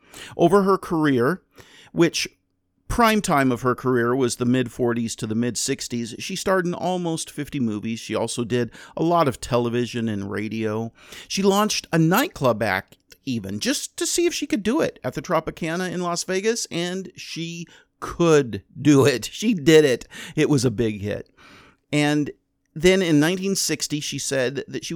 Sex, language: male, English